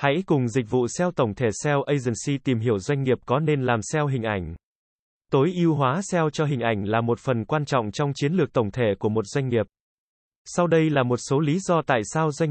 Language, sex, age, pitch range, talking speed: Vietnamese, male, 20-39, 120-155 Hz, 240 wpm